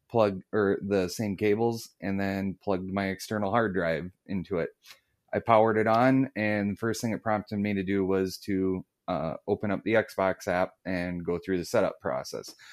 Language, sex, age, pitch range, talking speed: English, male, 30-49, 95-110 Hz, 195 wpm